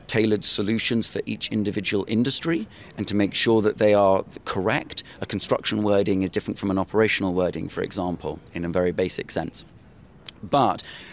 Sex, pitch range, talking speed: male, 90-105 Hz, 165 wpm